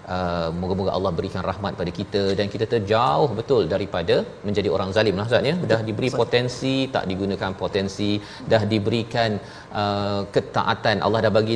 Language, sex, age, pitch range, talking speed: Malayalam, male, 30-49, 100-120 Hz, 165 wpm